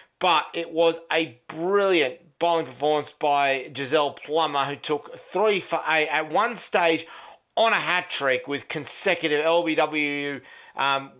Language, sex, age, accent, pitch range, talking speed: English, male, 40-59, Australian, 145-170 Hz, 135 wpm